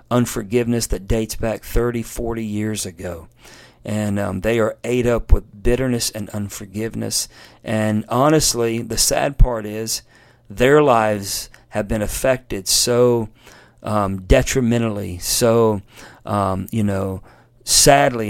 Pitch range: 110-125 Hz